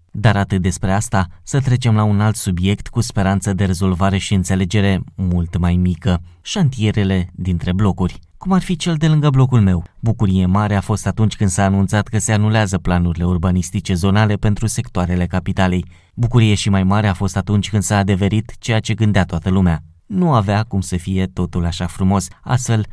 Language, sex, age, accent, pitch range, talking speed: Romanian, male, 20-39, native, 90-110 Hz, 185 wpm